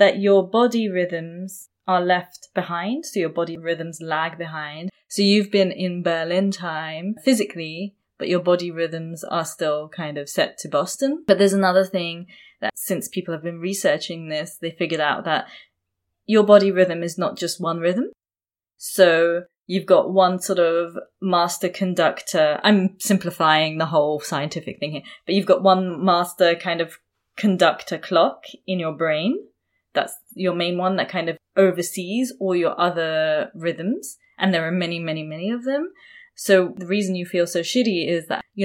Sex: female